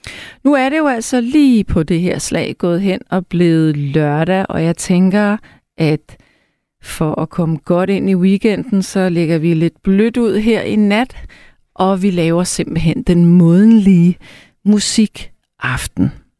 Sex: female